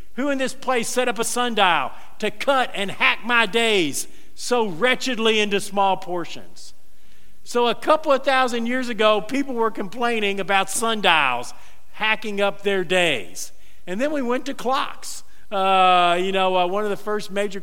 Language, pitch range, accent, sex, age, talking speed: English, 170-220 Hz, American, male, 50-69, 170 wpm